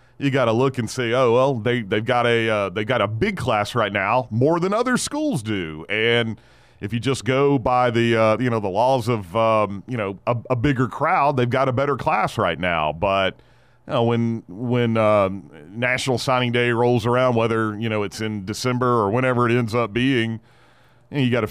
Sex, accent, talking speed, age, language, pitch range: male, American, 225 wpm, 40-59, English, 100-125 Hz